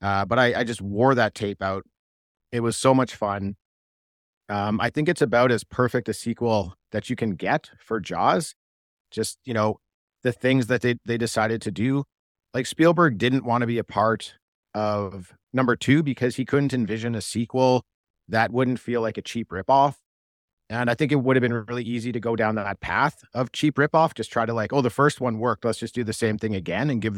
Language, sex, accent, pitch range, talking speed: English, male, American, 100-125 Hz, 220 wpm